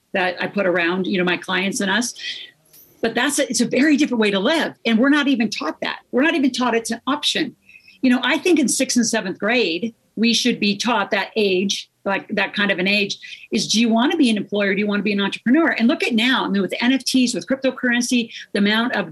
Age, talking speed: 50-69, 255 wpm